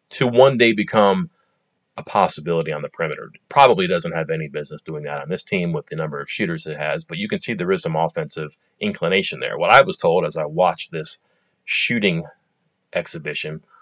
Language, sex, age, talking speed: English, male, 30-49, 200 wpm